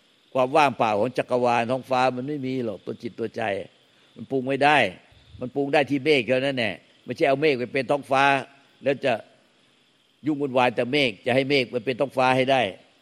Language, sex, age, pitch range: Thai, male, 60-79, 120-140 Hz